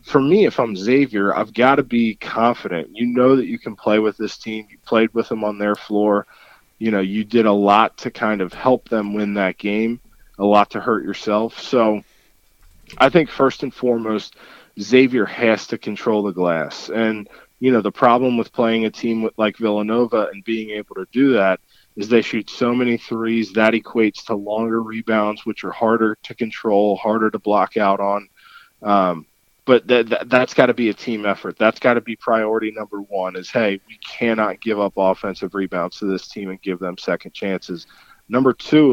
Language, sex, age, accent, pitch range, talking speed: English, male, 20-39, American, 100-115 Hz, 200 wpm